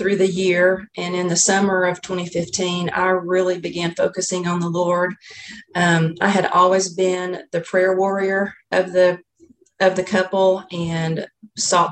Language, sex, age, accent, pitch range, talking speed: English, female, 40-59, American, 175-190 Hz, 155 wpm